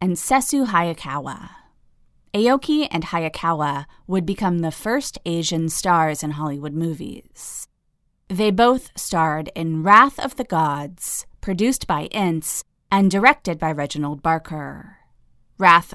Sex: female